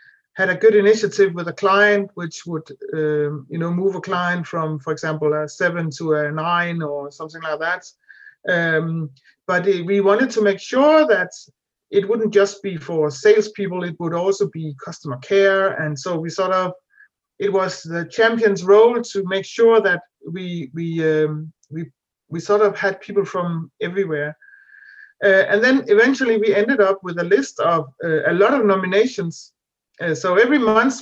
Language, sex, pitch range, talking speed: English, male, 165-215 Hz, 175 wpm